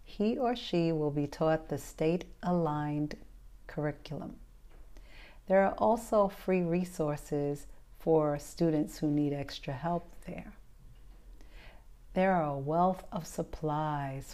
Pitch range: 145-180 Hz